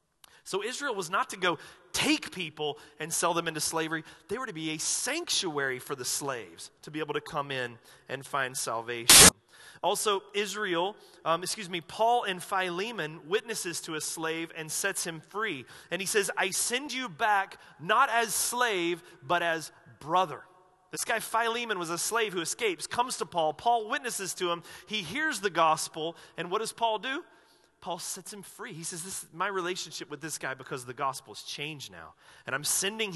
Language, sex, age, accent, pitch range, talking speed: English, male, 30-49, American, 150-195 Hz, 190 wpm